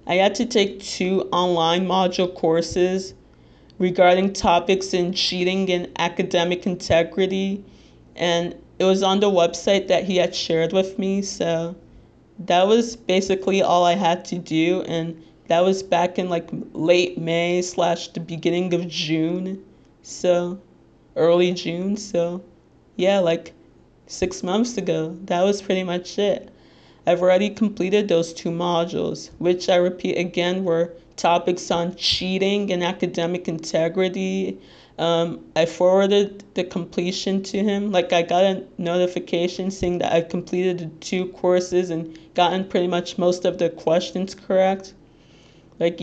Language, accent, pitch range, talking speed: English, American, 170-190 Hz, 140 wpm